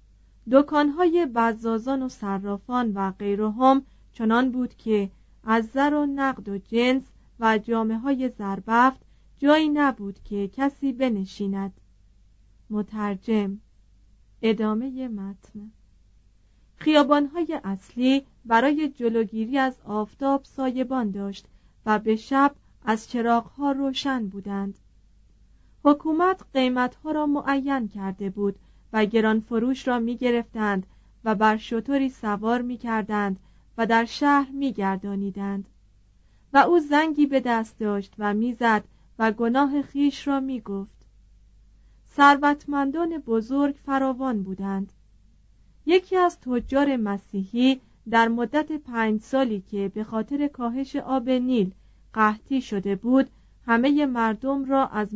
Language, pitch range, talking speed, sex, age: Persian, 200-270 Hz, 110 wpm, female, 40-59